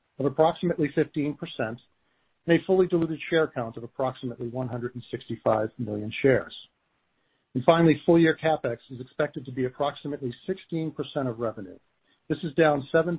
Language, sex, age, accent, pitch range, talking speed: English, male, 50-69, American, 125-150 Hz, 135 wpm